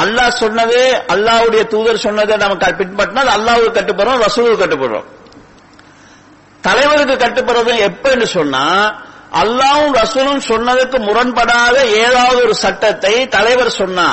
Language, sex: English, male